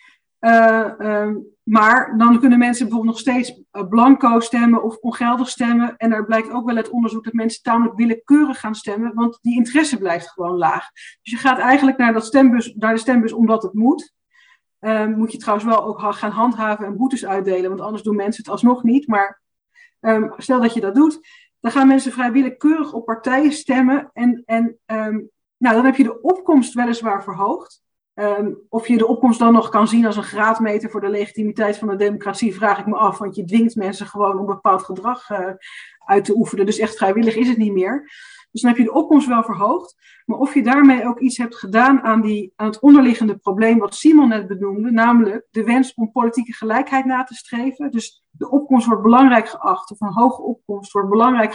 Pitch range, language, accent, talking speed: 215-255 Hz, Dutch, Dutch, 200 wpm